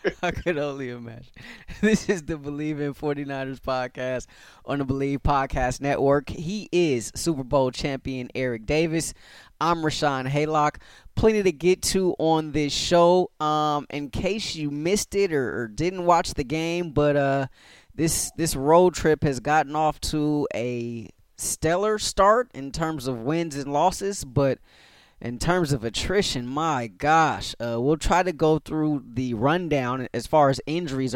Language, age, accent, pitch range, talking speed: English, 20-39, American, 130-160 Hz, 160 wpm